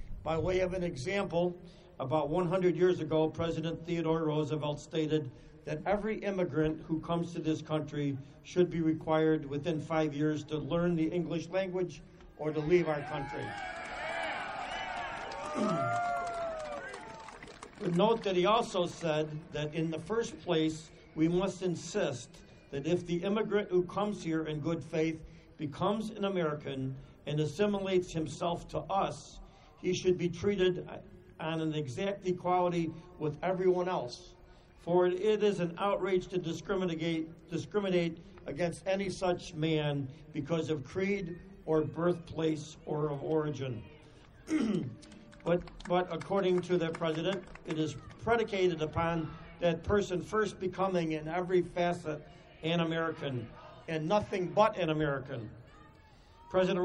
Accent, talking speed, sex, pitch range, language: American, 130 wpm, male, 155-185 Hz, English